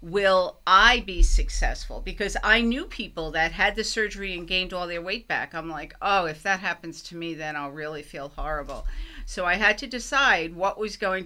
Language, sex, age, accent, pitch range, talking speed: English, female, 50-69, American, 170-215 Hz, 210 wpm